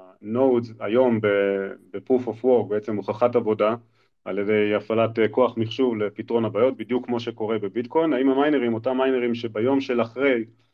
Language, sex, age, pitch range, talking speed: Hebrew, male, 30-49, 110-130 Hz, 145 wpm